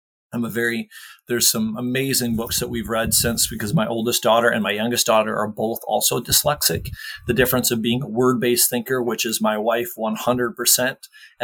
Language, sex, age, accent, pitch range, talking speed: English, male, 30-49, American, 115-140 Hz, 185 wpm